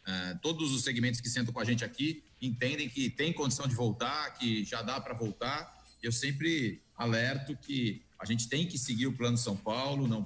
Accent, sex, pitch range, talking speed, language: Brazilian, male, 115-135 Hz, 205 wpm, Portuguese